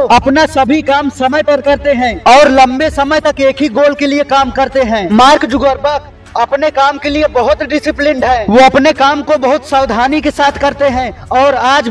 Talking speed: 200 wpm